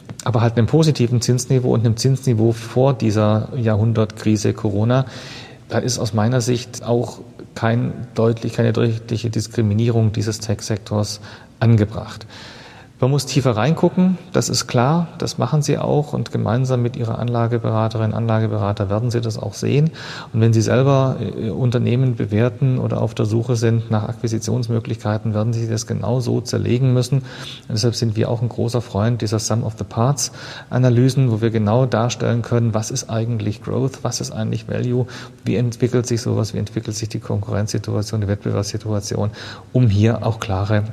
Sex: male